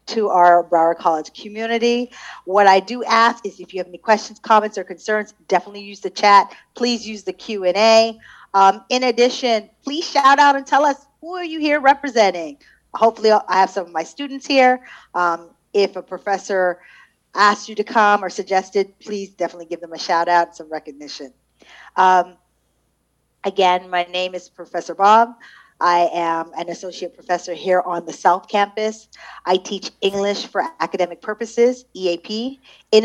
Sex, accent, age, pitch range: female, American, 40-59, 175-220 Hz